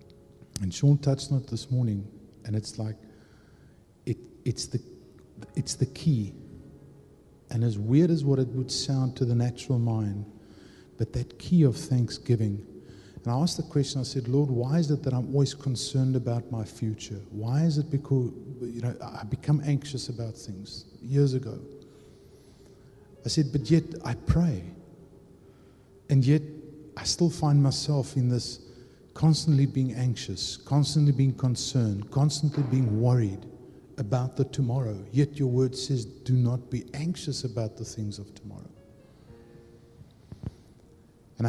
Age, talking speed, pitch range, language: 50-69, 150 wpm, 115-140 Hz, English